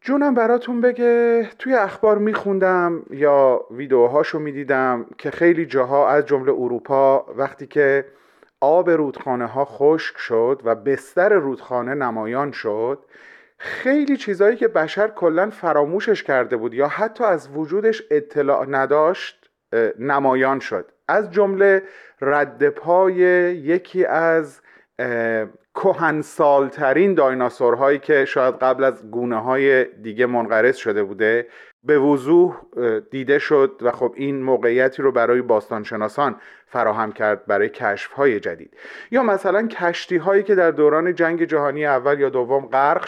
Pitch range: 135-210 Hz